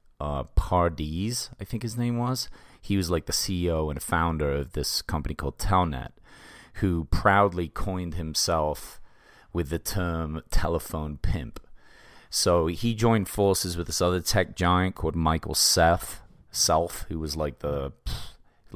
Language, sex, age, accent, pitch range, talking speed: English, male, 30-49, American, 80-95 Hz, 145 wpm